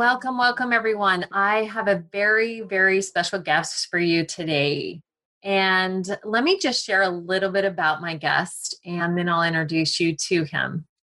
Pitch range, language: 170-220 Hz, English